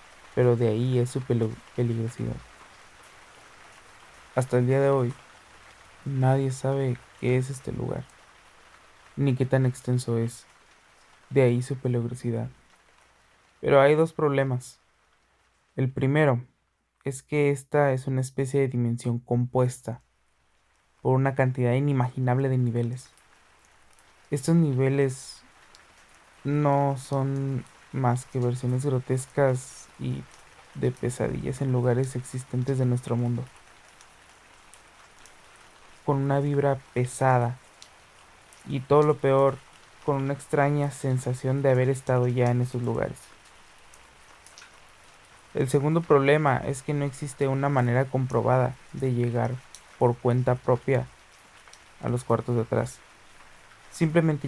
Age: 20-39